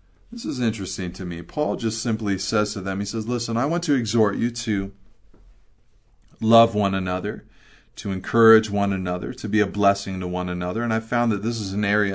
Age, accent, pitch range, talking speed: 40-59, American, 95-120 Hz, 205 wpm